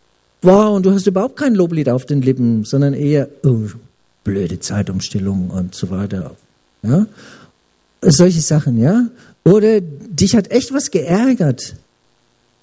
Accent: German